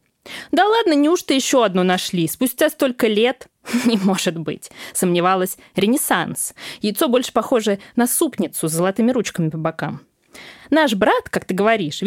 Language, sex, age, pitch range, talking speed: Russian, female, 20-39, 180-270 Hz, 145 wpm